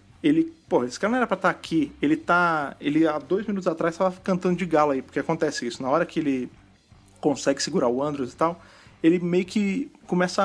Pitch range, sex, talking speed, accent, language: 145-190 Hz, male, 220 wpm, Brazilian, Portuguese